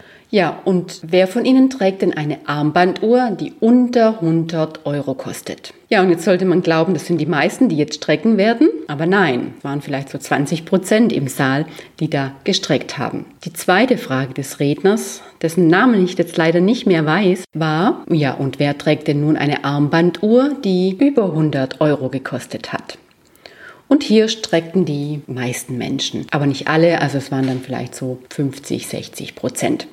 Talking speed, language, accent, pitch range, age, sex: 175 wpm, German, German, 140-200 Hz, 30-49, female